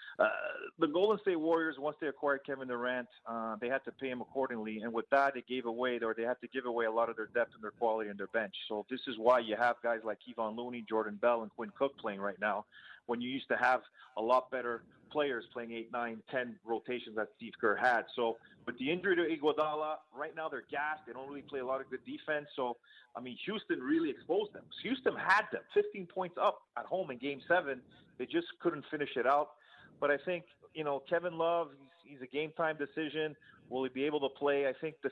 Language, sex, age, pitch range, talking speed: English, male, 30-49, 125-150 Hz, 240 wpm